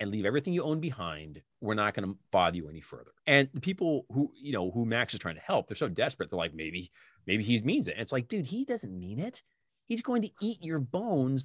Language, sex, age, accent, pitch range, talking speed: English, male, 30-49, American, 105-160 Hz, 260 wpm